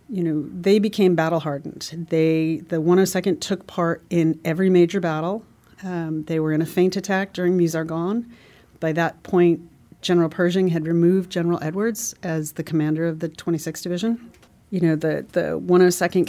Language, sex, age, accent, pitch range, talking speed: English, female, 40-59, American, 160-185 Hz, 160 wpm